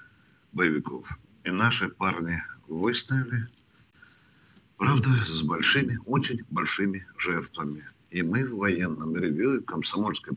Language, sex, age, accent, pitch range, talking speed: Russian, male, 50-69, native, 100-135 Hz, 100 wpm